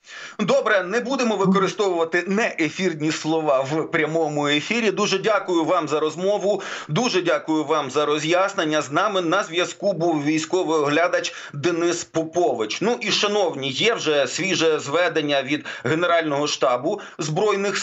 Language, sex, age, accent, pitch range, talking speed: Ukrainian, male, 30-49, native, 155-195 Hz, 135 wpm